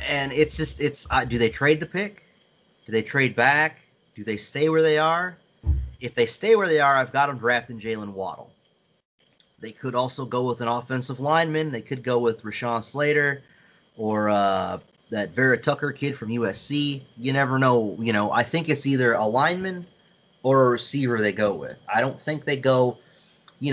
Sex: male